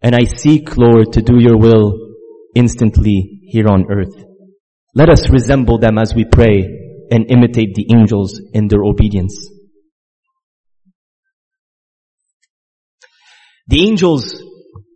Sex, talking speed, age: male, 110 wpm, 30-49